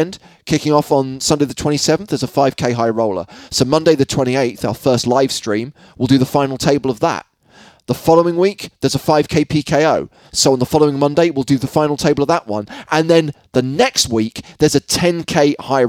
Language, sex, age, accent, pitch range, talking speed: English, male, 20-39, British, 120-170 Hz, 210 wpm